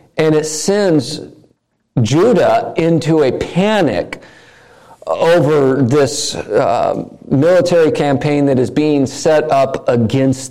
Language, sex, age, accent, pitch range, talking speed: English, male, 50-69, American, 135-170 Hz, 105 wpm